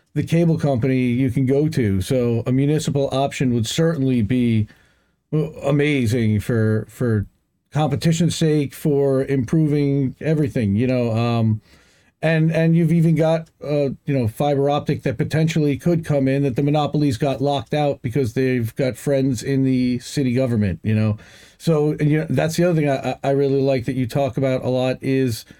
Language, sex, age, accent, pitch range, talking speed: English, male, 40-59, American, 120-150 Hz, 175 wpm